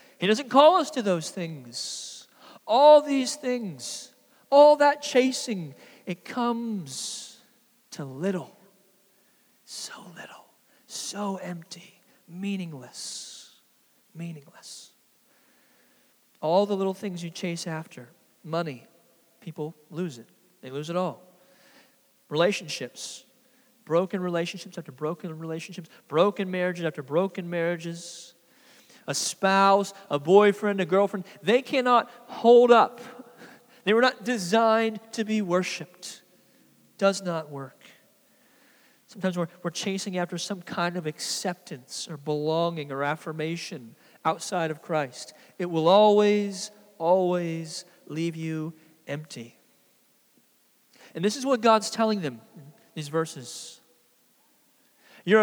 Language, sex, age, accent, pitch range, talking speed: English, male, 40-59, American, 165-240 Hz, 110 wpm